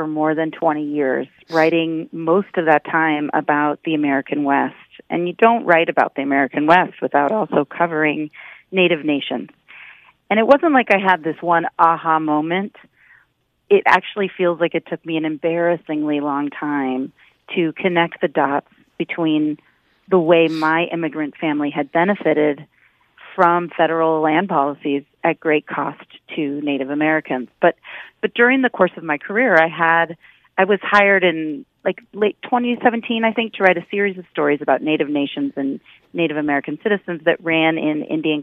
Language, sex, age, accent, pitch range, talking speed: English, female, 40-59, American, 150-190 Hz, 165 wpm